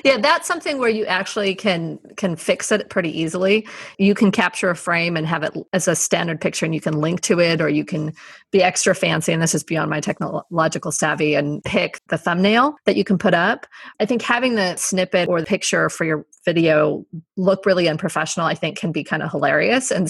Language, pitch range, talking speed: English, 160-210 Hz, 220 wpm